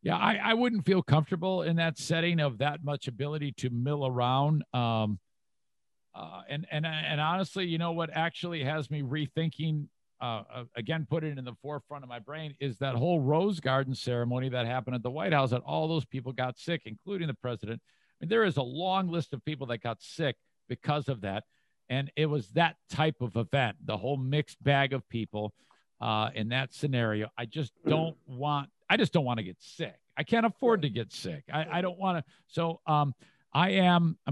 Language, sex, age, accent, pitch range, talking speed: English, male, 50-69, American, 125-165 Hz, 210 wpm